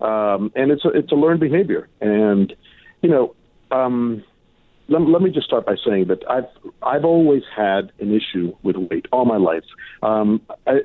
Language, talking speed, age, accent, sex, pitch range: English, 185 wpm, 50-69, American, male, 105-130 Hz